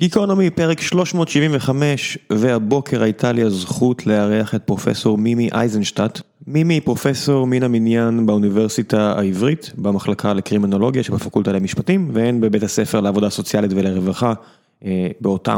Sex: male